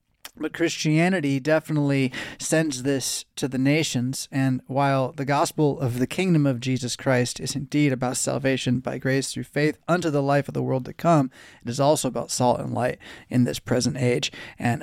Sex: male